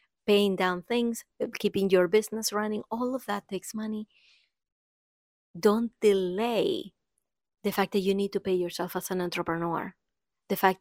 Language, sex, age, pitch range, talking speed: English, female, 30-49, 180-210 Hz, 150 wpm